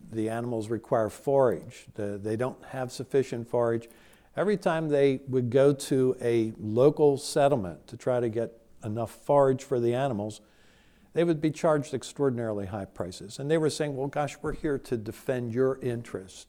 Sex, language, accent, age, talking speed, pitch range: male, English, American, 60-79, 165 wpm, 115-145 Hz